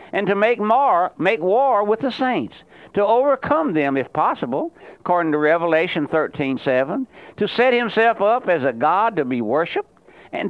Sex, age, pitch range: male, 60-79, 150-220 Hz